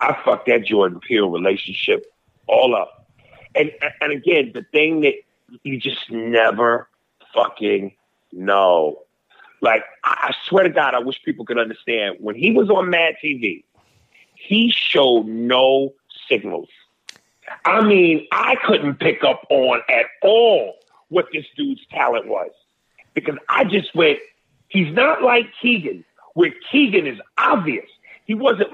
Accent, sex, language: American, male, English